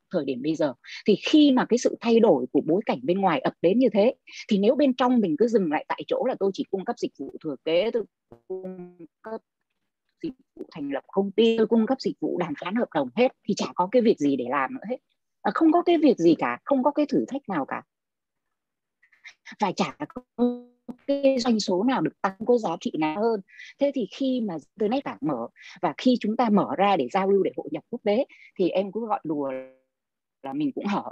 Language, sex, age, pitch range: Vietnamese, female, 20-39, 195-270 Hz